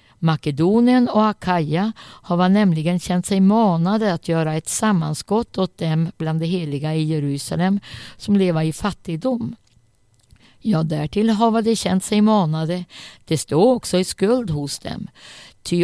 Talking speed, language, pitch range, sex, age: 150 wpm, Swedish, 155-205 Hz, female, 60-79